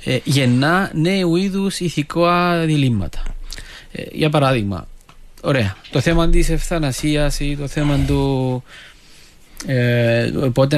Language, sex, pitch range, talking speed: Greek, male, 120-160 Hz, 110 wpm